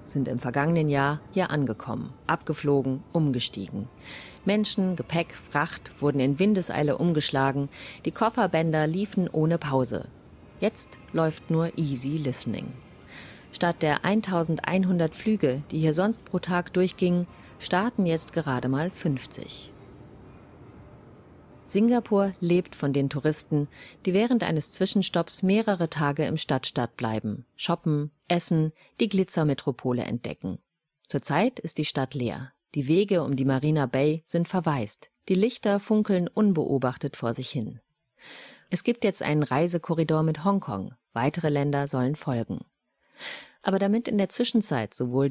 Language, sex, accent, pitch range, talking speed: German, female, German, 140-180 Hz, 125 wpm